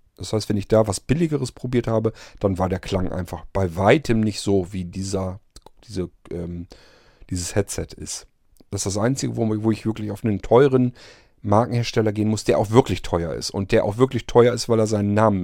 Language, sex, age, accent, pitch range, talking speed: German, male, 40-59, German, 100-130 Hz, 205 wpm